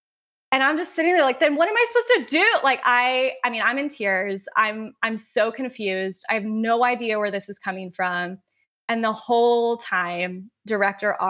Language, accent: English, American